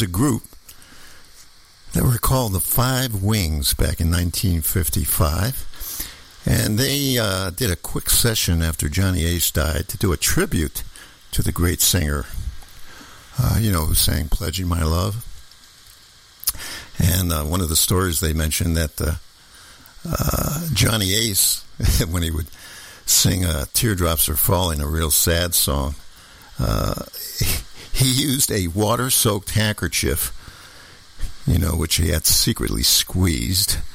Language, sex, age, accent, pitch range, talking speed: English, male, 60-79, American, 80-105 Hz, 135 wpm